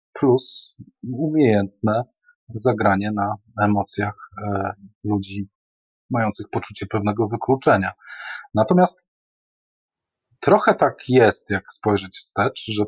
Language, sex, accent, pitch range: Polish, male, native, 100-155 Hz